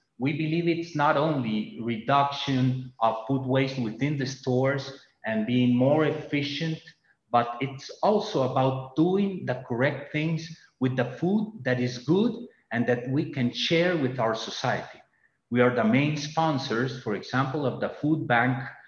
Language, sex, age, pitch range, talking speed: English, male, 40-59, 125-150 Hz, 155 wpm